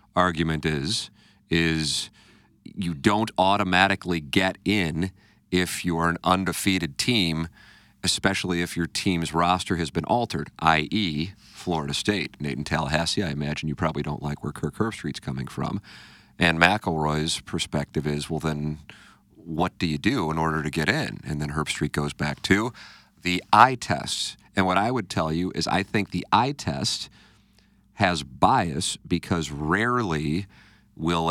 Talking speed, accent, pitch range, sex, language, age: 155 wpm, American, 75-95 Hz, male, English, 40-59